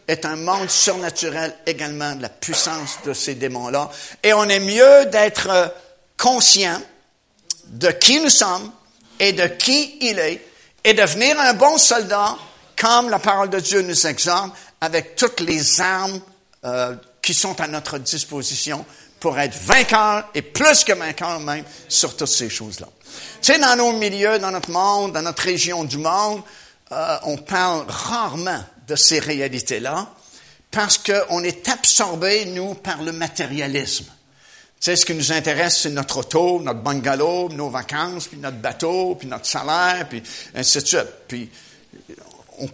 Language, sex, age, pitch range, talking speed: French, male, 60-79, 150-205 Hz, 160 wpm